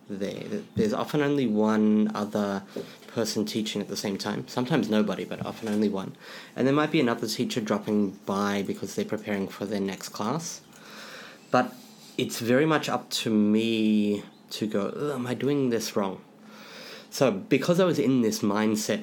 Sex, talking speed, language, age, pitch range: male, 175 wpm, English, 20-39, 105-125 Hz